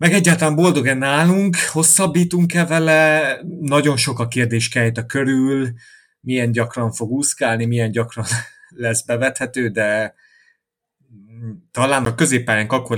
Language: Hungarian